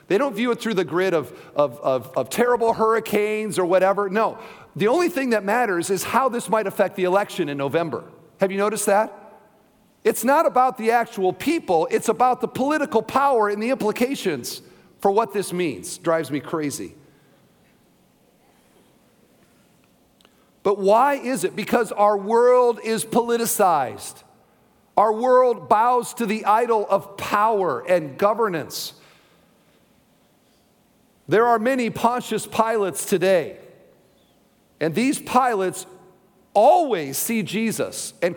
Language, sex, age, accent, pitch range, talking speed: English, male, 50-69, American, 195-255 Hz, 135 wpm